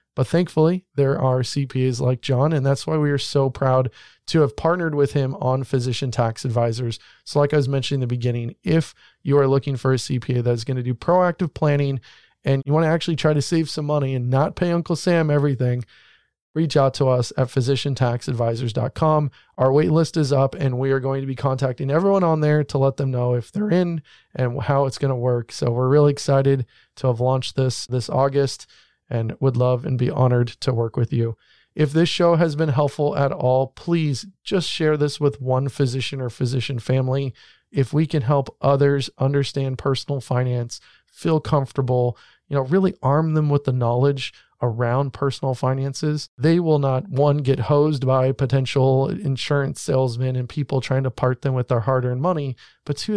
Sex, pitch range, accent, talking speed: male, 130-150 Hz, American, 200 wpm